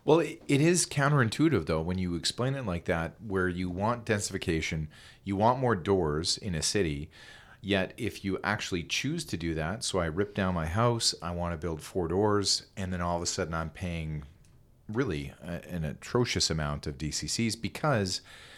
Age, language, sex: 40-59, English, male